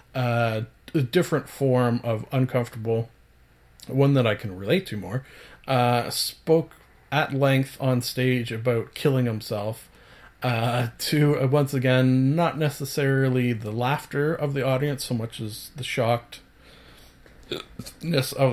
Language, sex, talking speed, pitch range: English, male, 130 wpm, 120-150 Hz